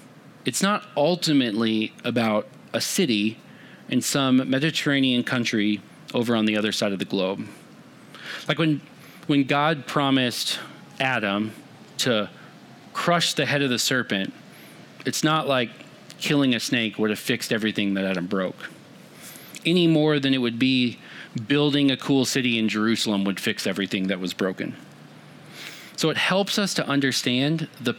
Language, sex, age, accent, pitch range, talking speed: English, male, 30-49, American, 115-155 Hz, 150 wpm